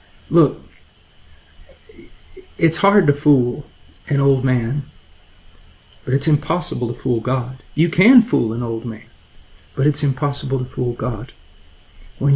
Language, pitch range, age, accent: English, 115-145 Hz, 40-59, American